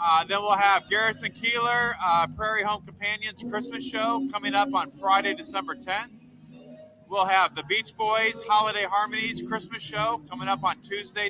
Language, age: English, 30-49